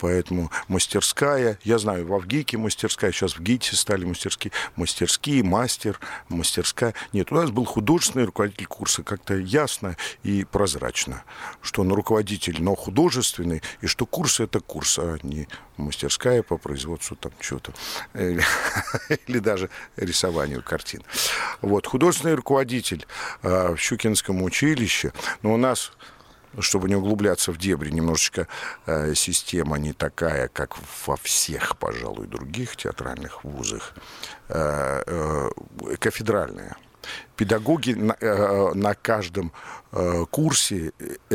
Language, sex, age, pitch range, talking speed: Russian, male, 50-69, 90-125 Hz, 120 wpm